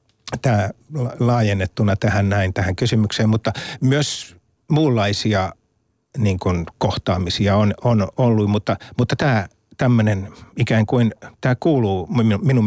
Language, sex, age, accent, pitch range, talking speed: Finnish, male, 60-79, native, 100-130 Hz, 110 wpm